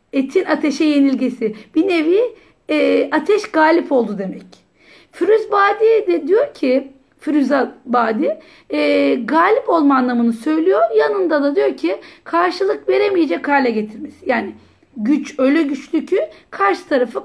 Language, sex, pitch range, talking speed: Turkish, female, 245-315 Hz, 125 wpm